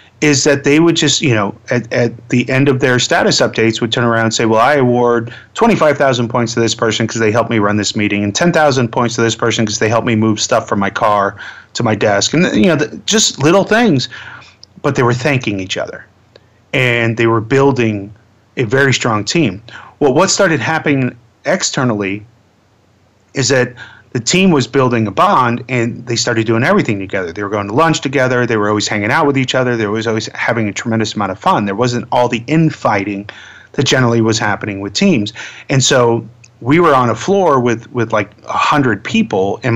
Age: 30-49